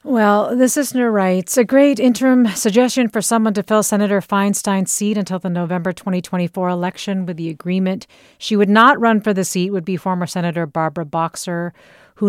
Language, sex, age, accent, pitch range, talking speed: English, female, 40-59, American, 170-200 Hz, 180 wpm